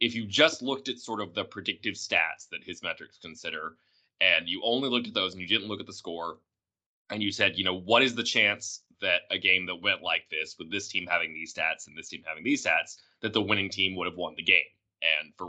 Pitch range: 95-120 Hz